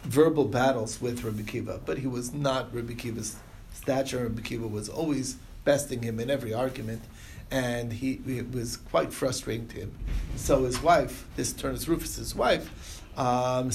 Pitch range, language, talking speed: 110-135 Hz, English, 160 wpm